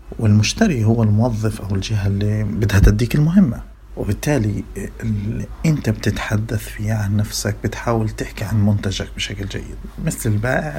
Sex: male